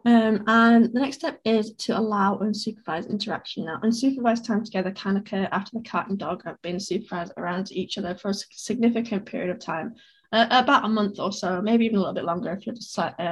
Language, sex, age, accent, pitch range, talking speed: English, female, 10-29, British, 185-225 Hz, 215 wpm